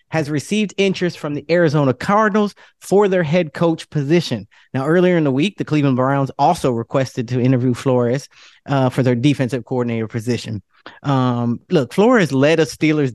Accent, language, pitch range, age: American, English, 130-165 Hz, 30-49